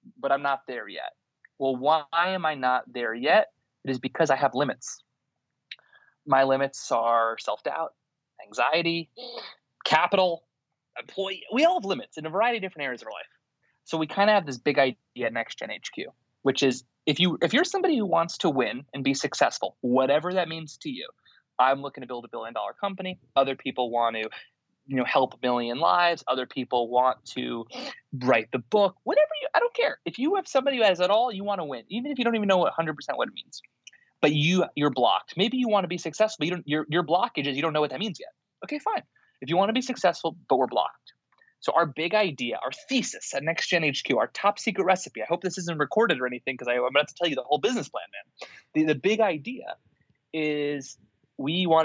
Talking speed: 220 wpm